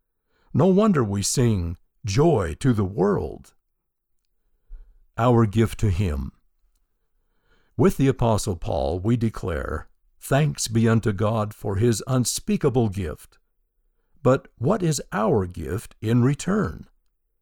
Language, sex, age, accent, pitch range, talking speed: English, male, 60-79, American, 95-130 Hz, 115 wpm